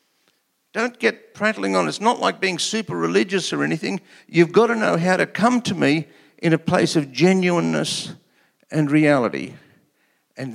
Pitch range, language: 130-170 Hz, English